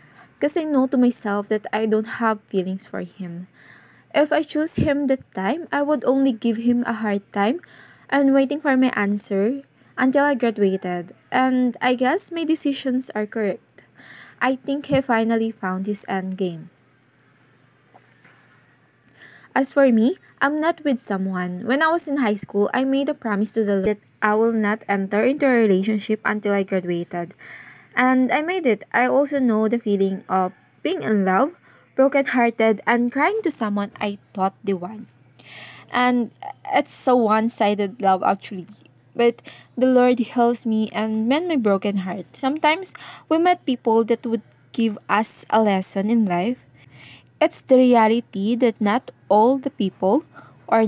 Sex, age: female, 20-39